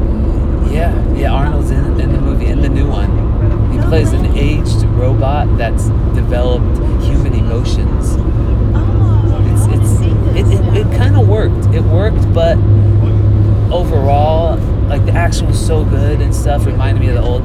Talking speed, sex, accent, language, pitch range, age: 155 wpm, male, American, English, 85-110 Hz, 30-49